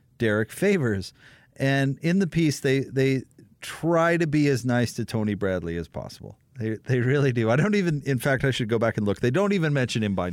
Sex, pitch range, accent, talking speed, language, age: male, 120-170 Hz, American, 225 wpm, English, 40-59